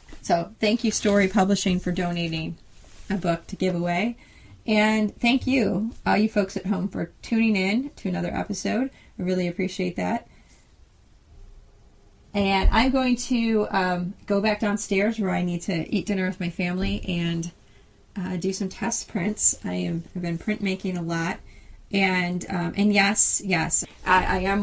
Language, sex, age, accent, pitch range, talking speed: English, female, 30-49, American, 170-200 Hz, 165 wpm